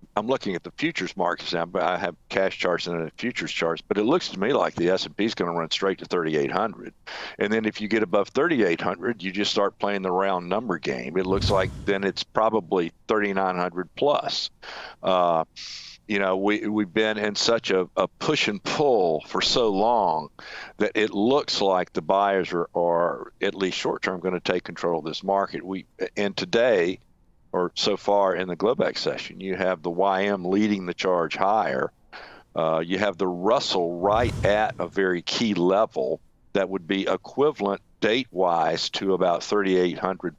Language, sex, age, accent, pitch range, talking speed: English, male, 50-69, American, 90-105 Hz, 185 wpm